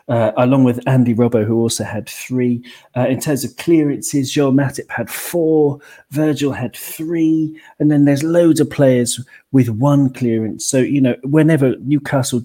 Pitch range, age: 125-175 Hz, 40-59